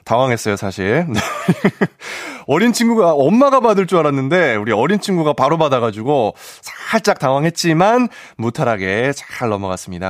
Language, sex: Korean, male